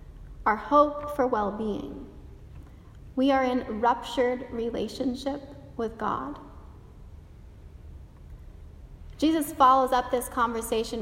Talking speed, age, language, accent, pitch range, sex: 85 wpm, 30-49, English, American, 230-280 Hz, female